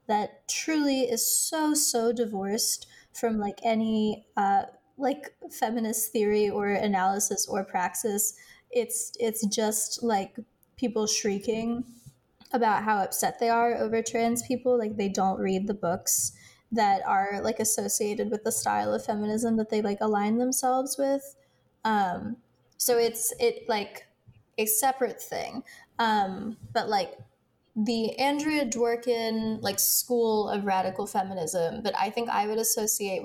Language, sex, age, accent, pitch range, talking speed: English, female, 10-29, American, 200-235 Hz, 140 wpm